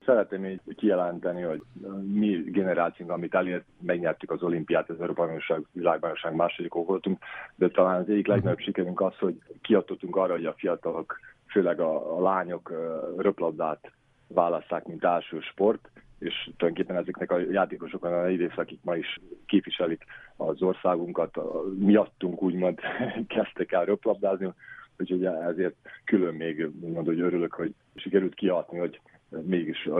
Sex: male